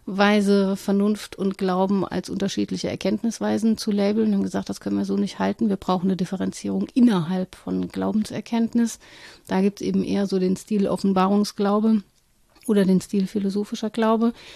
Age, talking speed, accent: 30-49, 155 wpm, German